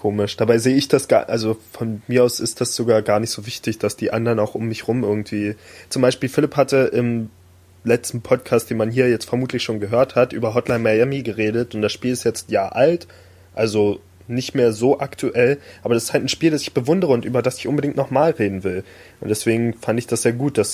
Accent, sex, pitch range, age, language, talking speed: German, male, 105-125 Hz, 20-39, German, 235 wpm